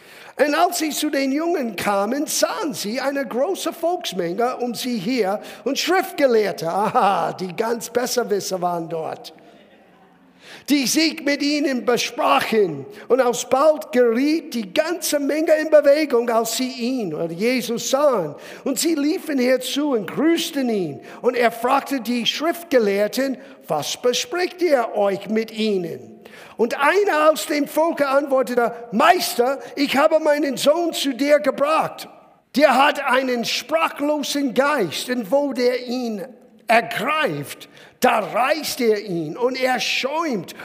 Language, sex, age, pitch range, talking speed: German, male, 50-69, 240-310 Hz, 135 wpm